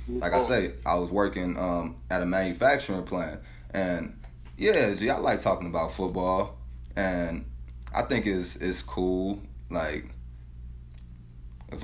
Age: 20-39